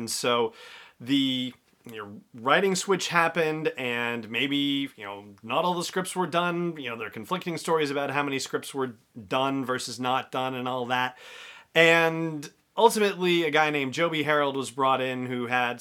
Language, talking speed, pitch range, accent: English, 175 wpm, 120-150 Hz, American